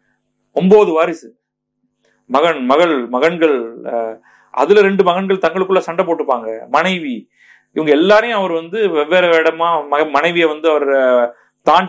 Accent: native